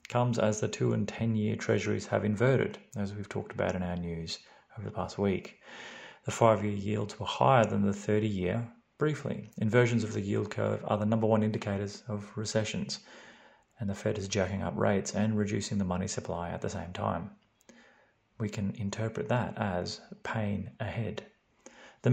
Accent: Australian